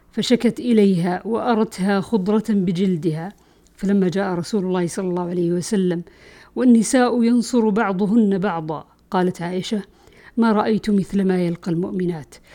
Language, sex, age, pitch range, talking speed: Arabic, female, 50-69, 190-225 Hz, 120 wpm